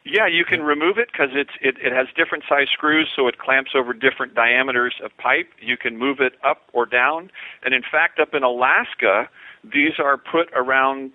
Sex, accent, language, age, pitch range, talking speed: male, American, English, 50-69, 120-145 Hz, 200 wpm